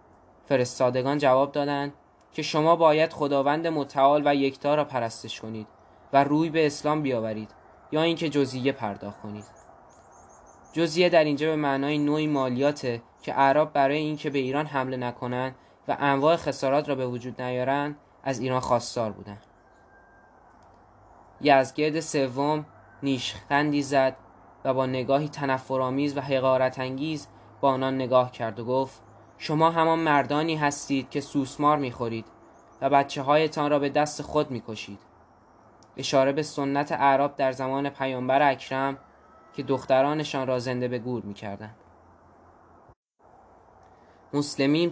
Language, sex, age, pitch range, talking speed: Persian, male, 10-29, 125-145 Hz, 125 wpm